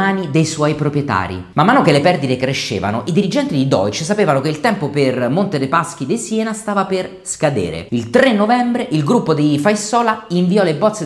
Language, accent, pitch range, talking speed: Italian, native, 140-200 Hz, 195 wpm